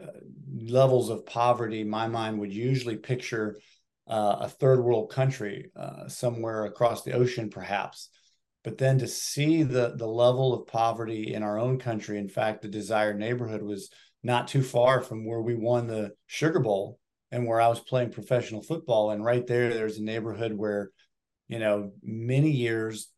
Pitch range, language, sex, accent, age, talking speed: 110-125 Hz, English, male, American, 40-59, 170 wpm